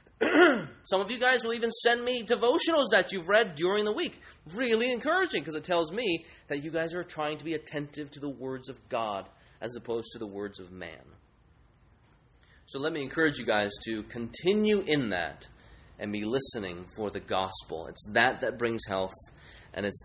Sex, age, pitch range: male, 20-39, 105-160 Hz